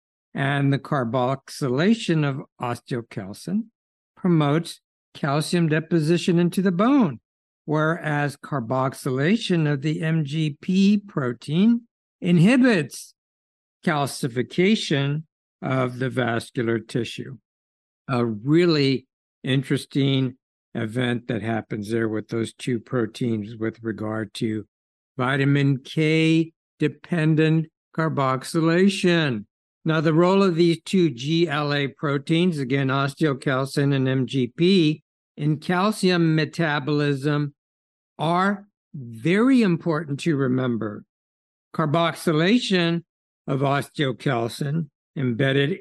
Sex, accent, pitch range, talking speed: male, American, 130-170 Hz, 85 wpm